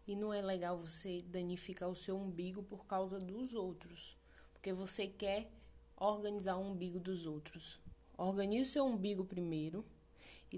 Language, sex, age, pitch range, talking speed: Portuguese, female, 10-29, 170-200 Hz, 155 wpm